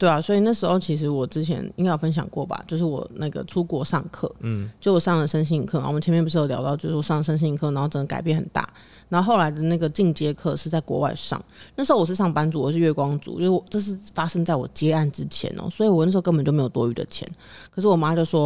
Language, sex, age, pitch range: Chinese, female, 30-49, 155-180 Hz